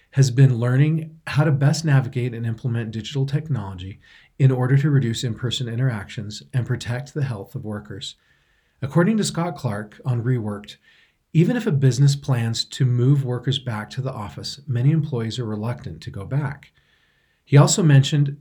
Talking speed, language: 165 wpm, English